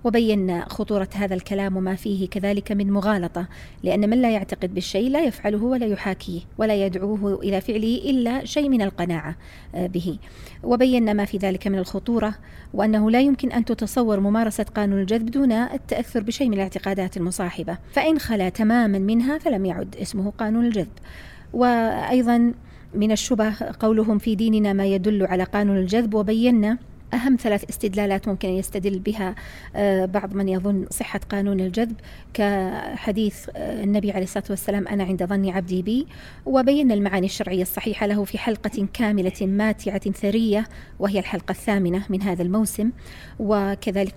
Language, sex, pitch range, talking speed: Arabic, female, 190-220 Hz, 145 wpm